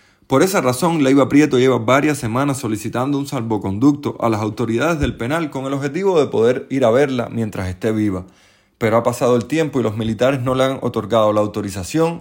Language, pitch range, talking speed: Spanish, 105-145 Hz, 200 wpm